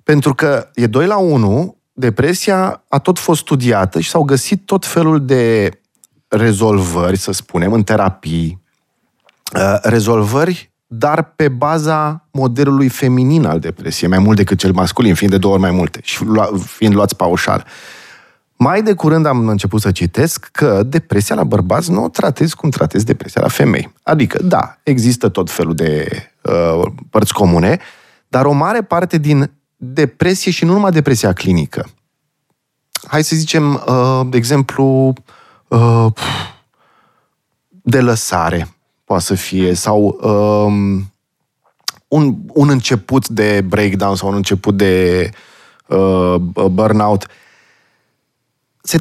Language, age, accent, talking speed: Romanian, 30-49, native, 130 wpm